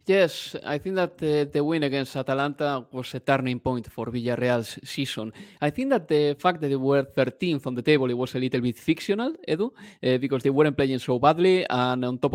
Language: English